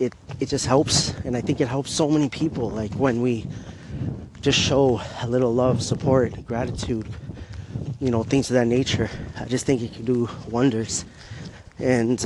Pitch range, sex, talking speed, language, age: 115-140 Hz, male, 170 wpm, English, 30-49